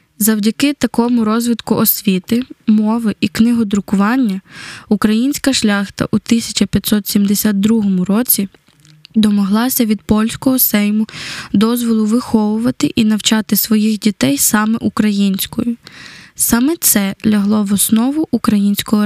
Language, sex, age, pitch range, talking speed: Ukrainian, female, 10-29, 205-240 Hz, 95 wpm